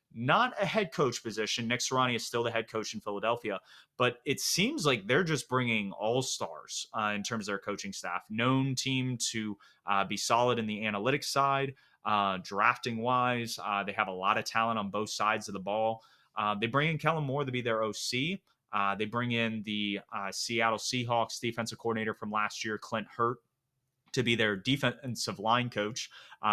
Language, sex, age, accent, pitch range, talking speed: English, male, 30-49, American, 105-120 Hz, 195 wpm